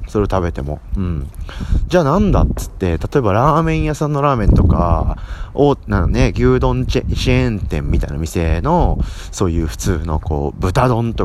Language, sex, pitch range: Japanese, male, 85-125 Hz